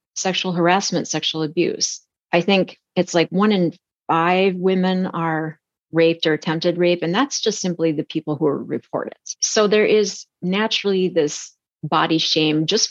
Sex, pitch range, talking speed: female, 165-210 Hz, 160 wpm